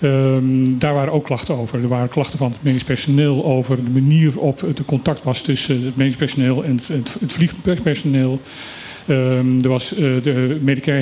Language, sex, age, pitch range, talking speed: Dutch, male, 40-59, 135-170 Hz, 160 wpm